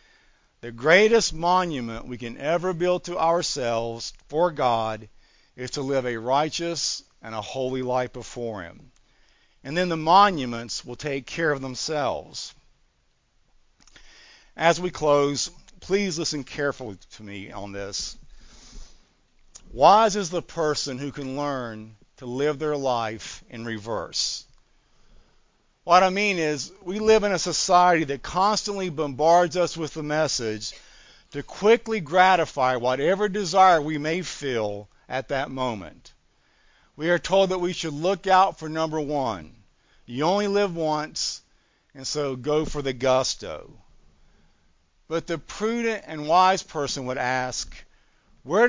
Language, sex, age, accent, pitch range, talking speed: English, male, 50-69, American, 125-180 Hz, 135 wpm